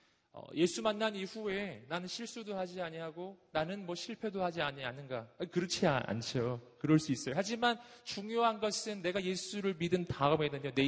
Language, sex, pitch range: Korean, male, 120-175 Hz